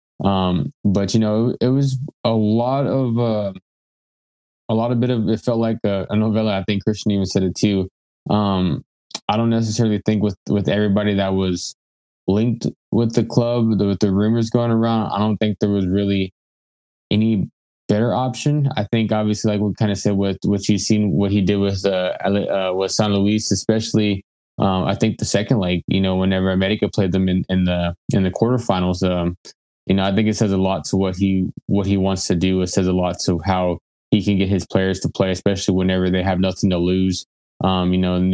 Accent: American